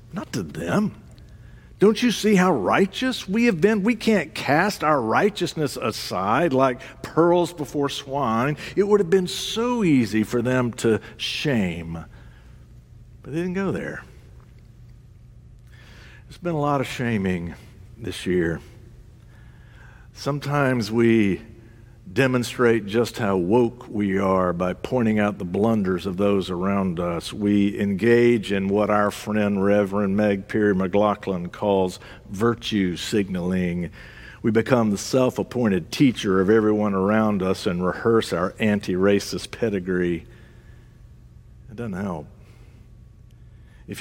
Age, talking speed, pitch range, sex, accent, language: 60-79, 125 wpm, 100-125 Hz, male, American, English